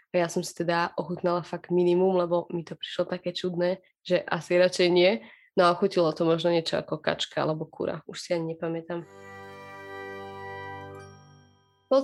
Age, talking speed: 20-39, 160 wpm